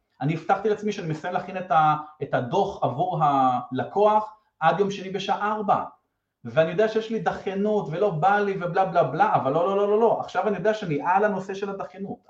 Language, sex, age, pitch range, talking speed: Hebrew, male, 30-49, 140-205 Hz, 195 wpm